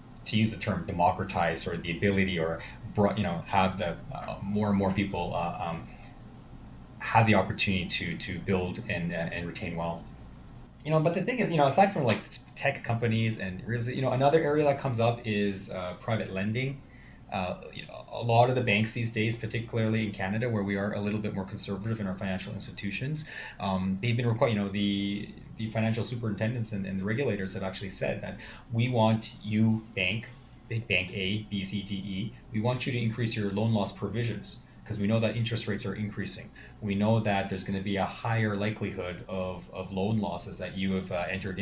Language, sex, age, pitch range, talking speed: English, male, 20-39, 95-115 Hz, 205 wpm